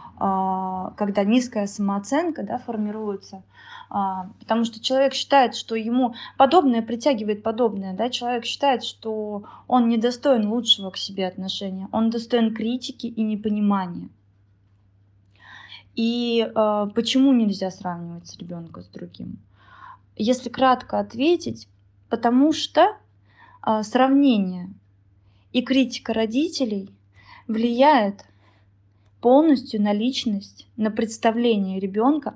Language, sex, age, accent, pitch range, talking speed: Russian, female, 20-39, native, 190-245 Hz, 100 wpm